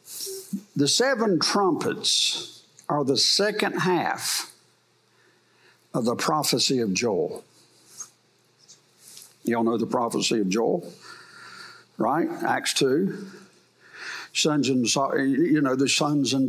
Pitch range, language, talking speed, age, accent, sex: 130-175 Hz, English, 110 wpm, 60-79, American, male